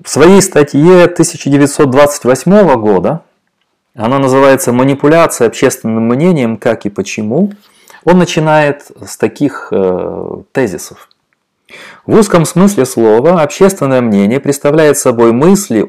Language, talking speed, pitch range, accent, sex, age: Russian, 105 wpm, 120-180 Hz, native, male, 30-49